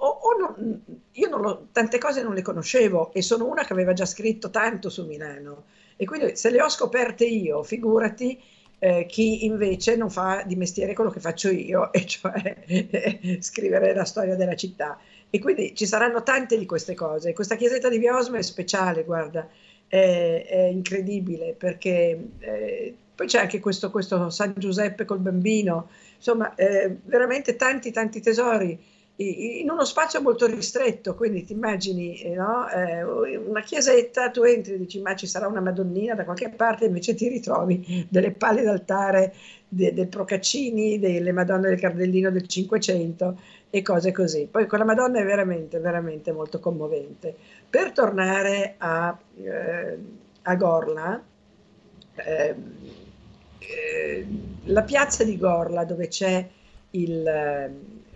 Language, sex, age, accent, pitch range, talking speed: Italian, female, 50-69, native, 180-230 Hz, 150 wpm